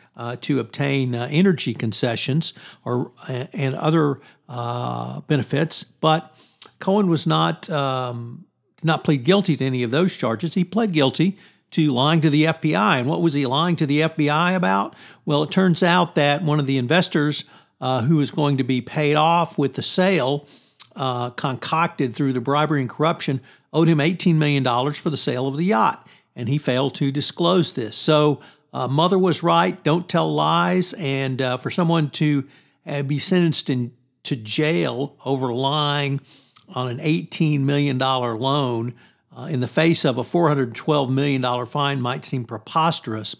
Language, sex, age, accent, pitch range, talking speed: English, male, 50-69, American, 135-165 Hz, 170 wpm